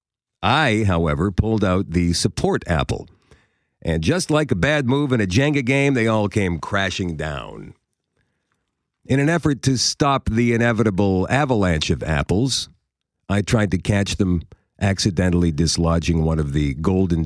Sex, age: male, 50-69